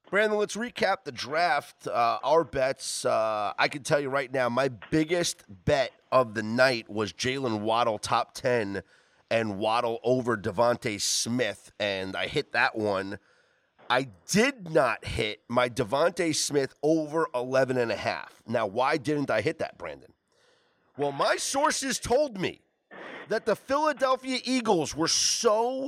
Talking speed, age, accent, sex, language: 155 wpm, 30-49, American, male, English